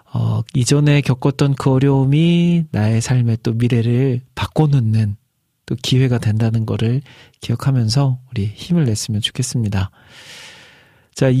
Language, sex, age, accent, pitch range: Korean, male, 40-59, native, 115-140 Hz